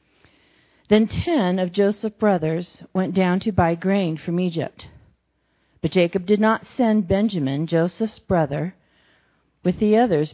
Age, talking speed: 40-59, 135 wpm